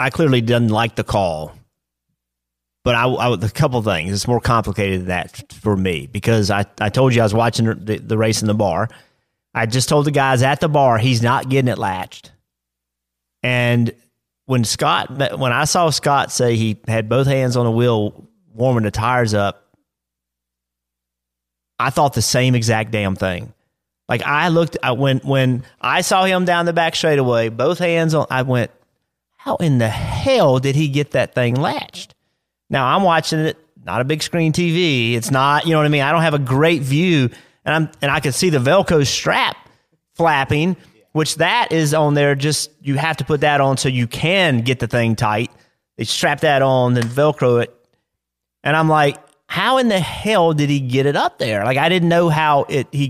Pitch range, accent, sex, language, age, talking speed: 115-155 Hz, American, male, English, 30-49, 200 wpm